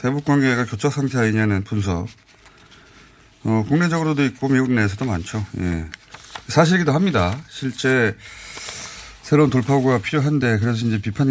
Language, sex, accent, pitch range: Korean, male, native, 100-140 Hz